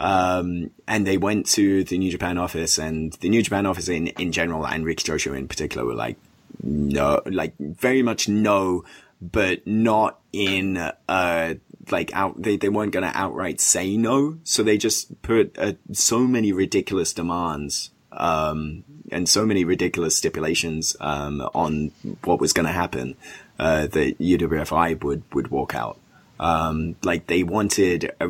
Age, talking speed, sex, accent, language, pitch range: 20-39, 165 wpm, male, British, English, 80-100 Hz